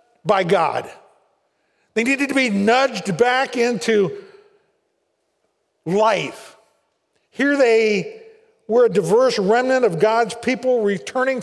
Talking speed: 105 wpm